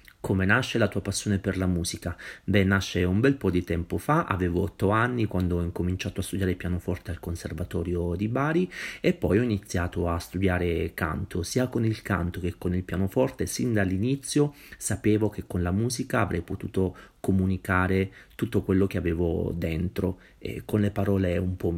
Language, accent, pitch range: Italian, native, 90-105 Hz